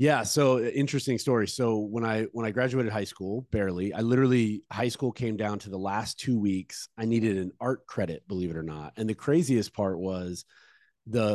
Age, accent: 30-49, American